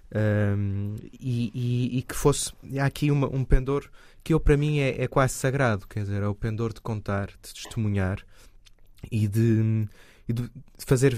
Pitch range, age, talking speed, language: 100-125 Hz, 20-39, 175 wpm, Portuguese